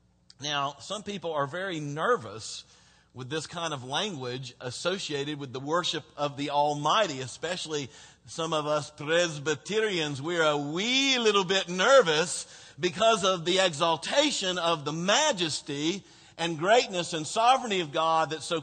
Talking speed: 140 wpm